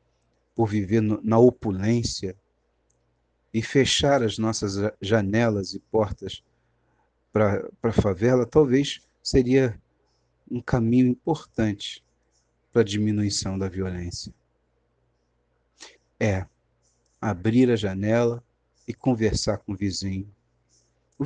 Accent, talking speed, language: Brazilian, 95 wpm, Portuguese